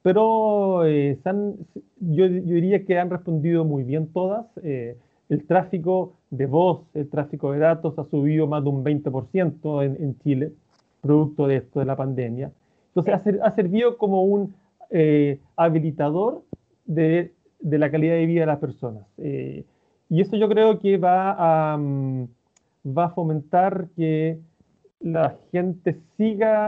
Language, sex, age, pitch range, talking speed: Spanish, male, 40-59, 140-180 Hz, 155 wpm